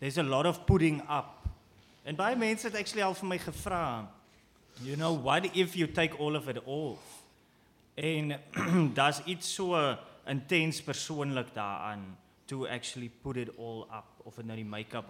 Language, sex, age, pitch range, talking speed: English, male, 20-39, 110-145 Hz, 165 wpm